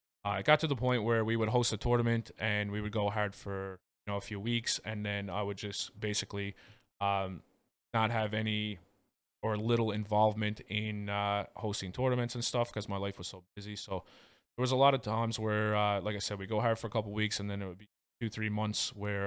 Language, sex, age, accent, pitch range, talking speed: English, male, 20-39, American, 100-110 Hz, 235 wpm